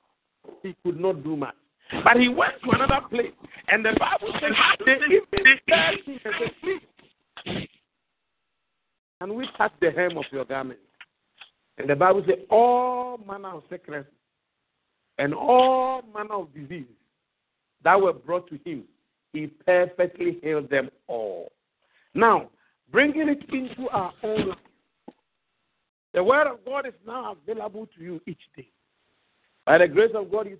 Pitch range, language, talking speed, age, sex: 195-270 Hz, English, 135 wpm, 50-69, male